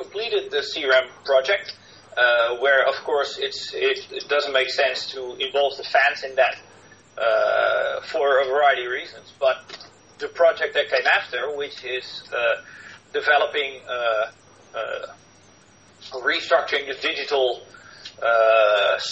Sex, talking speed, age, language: male, 130 wpm, 40-59, English